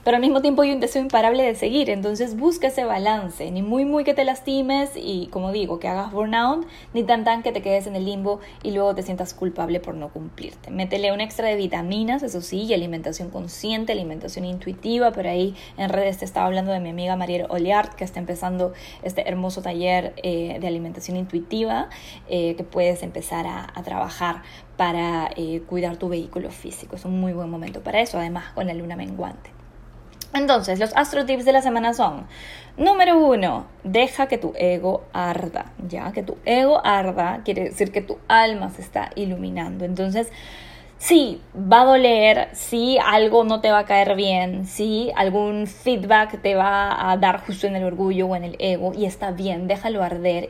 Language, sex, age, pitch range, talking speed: Spanish, female, 10-29, 180-220 Hz, 195 wpm